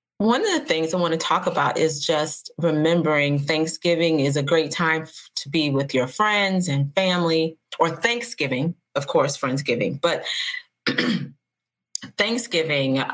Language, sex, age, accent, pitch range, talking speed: English, female, 30-49, American, 140-165 Hz, 145 wpm